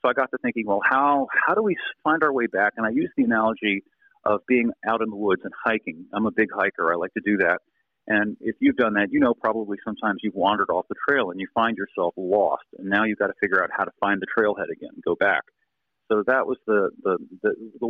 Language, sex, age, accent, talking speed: English, male, 40-59, American, 255 wpm